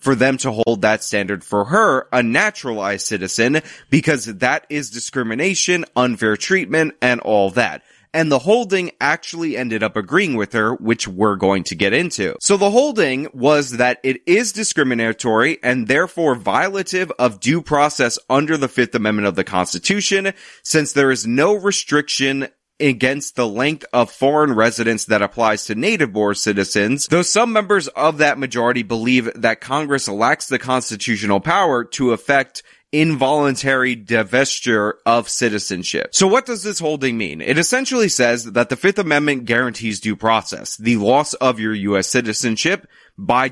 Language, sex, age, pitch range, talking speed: English, male, 20-39, 110-155 Hz, 155 wpm